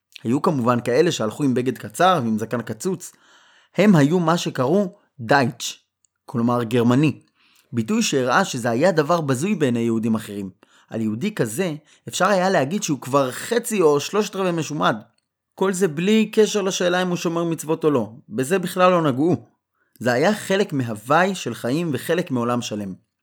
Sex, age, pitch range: male, 20-39, 120-180 Hz